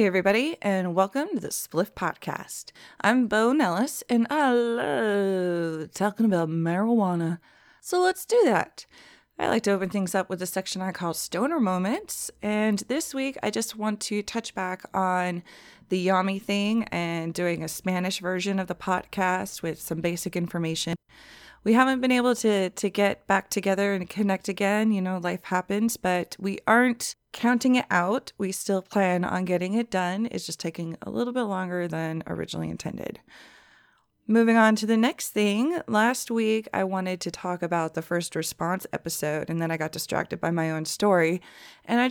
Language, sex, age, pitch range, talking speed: English, female, 20-39, 175-225 Hz, 180 wpm